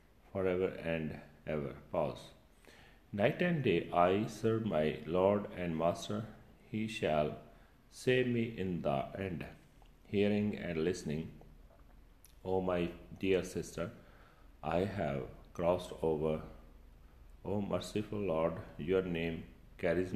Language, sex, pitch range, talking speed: Punjabi, male, 80-105 Hz, 110 wpm